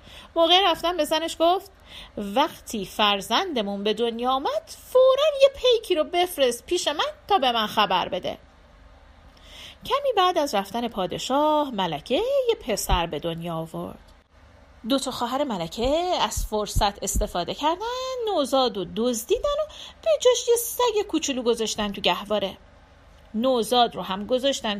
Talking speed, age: 135 wpm, 40-59